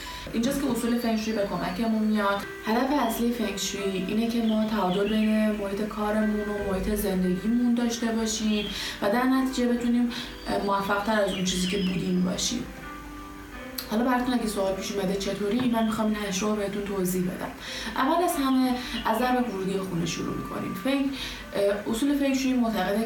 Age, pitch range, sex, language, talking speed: 20-39, 190-240 Hz, female, Persian, 160 wpm